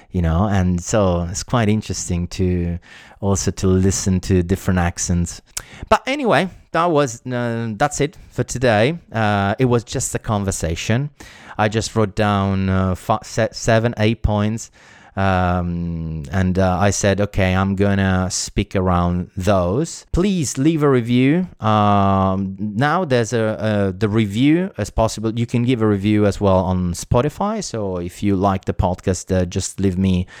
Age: 30-49